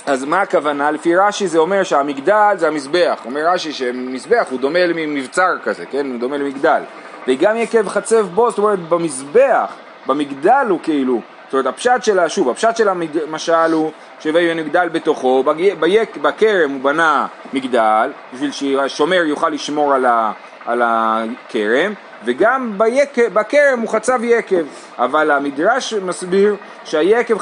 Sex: male